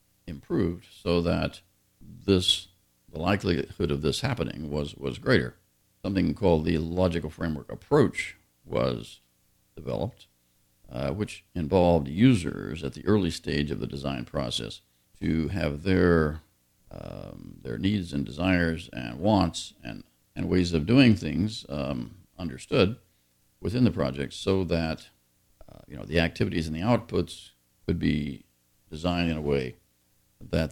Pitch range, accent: 70-95 Hz, American